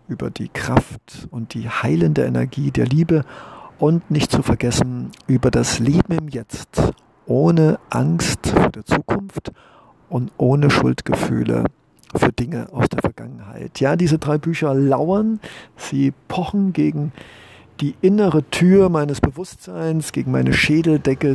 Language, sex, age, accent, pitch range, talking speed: German, male, 50-69, German, 125-155 Hz, 130 wpm